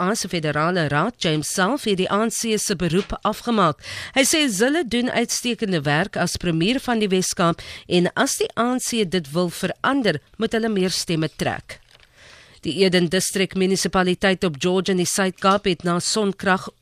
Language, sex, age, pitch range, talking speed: English, female, 40-59, 175-220 Hz, 155 wpm